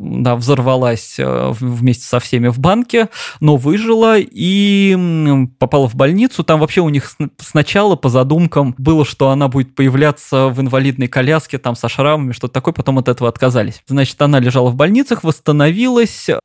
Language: Russian